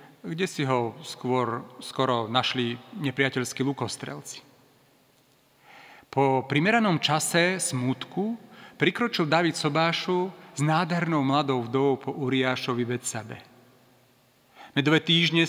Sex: male